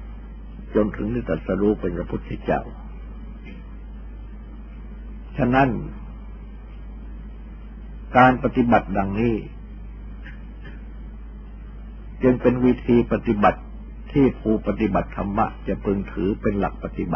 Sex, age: male, 60-79